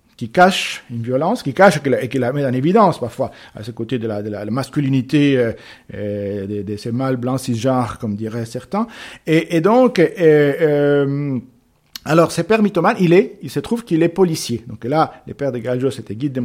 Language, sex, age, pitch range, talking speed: French, male, 50-69, 125-170 Hz, 215 wpm